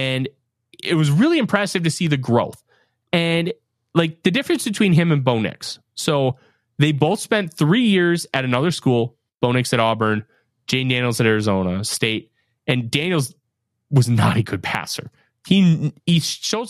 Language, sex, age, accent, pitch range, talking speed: English, male, 30-49, American, 120-185 Hz, 155 wpm